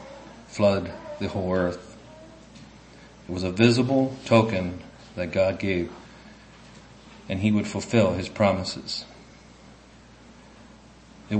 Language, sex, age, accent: English, male, 40-59, American